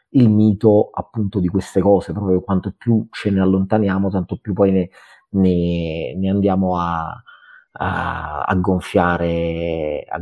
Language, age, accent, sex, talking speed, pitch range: Italian, 30-49, native, male, 140 wpm, 90-105 Hz